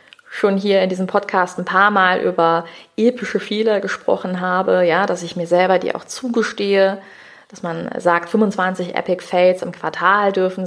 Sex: female